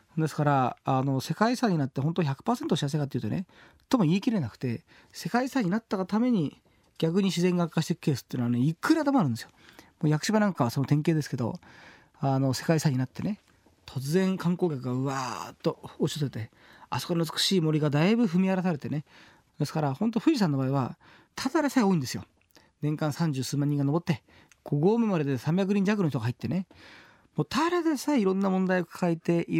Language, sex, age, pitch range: Japanese, male, 40-59, 140-195 Hz